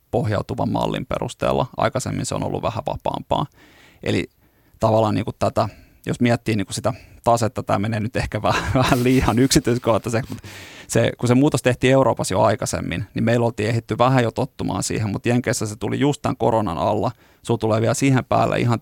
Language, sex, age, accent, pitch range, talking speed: Finnish, male, 30-49, native, 110-130 Hz, 190 wpm